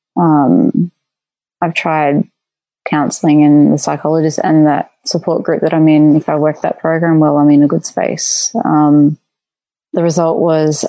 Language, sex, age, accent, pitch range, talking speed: English, female, 20-39, Australian, 155-170 Hz, 160 wpm